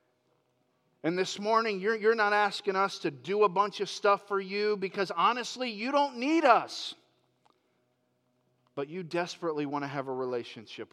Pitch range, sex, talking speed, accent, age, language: 125-180 Hz, male, 165 wpm, American, 40-59, English